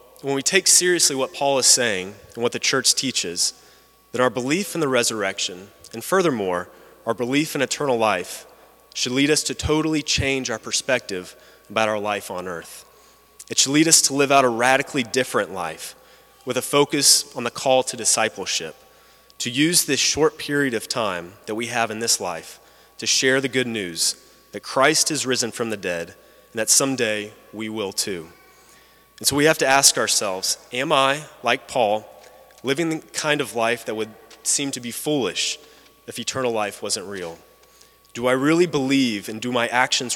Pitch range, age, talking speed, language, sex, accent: 115-140 Hz, 30-49, 185 wpm, English, male, American